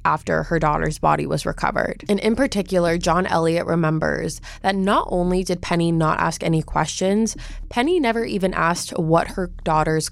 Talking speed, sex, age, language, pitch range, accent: 165 wpm, female, 20-39, English, 160-195 Hz, American